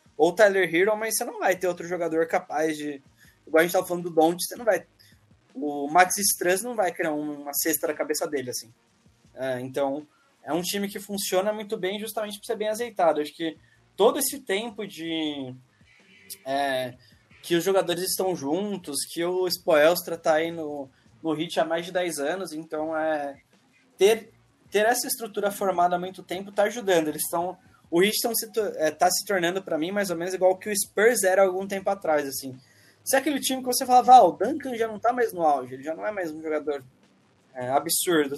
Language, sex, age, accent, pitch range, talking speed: English, male, 20-39, Brazilian, 155-200 Hz, 210 wpm